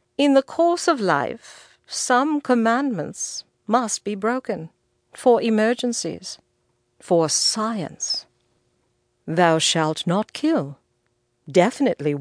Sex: female